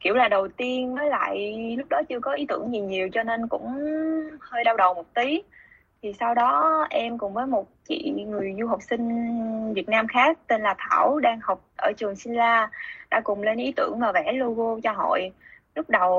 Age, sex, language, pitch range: 20-39, female, Vietnamese, 205-285 Hz